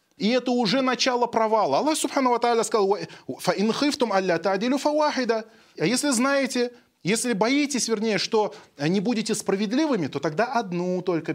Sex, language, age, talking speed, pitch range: male, Russian, 20-39, 135 wpm, 160-230 Hz